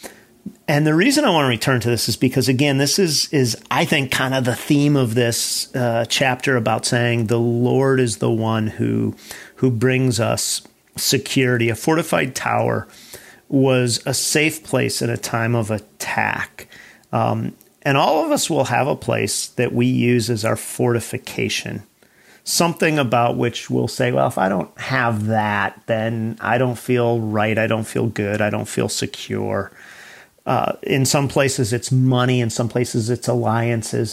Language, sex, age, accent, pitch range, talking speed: English, male, 40-59, American, 115-130 Hz, 175 wpm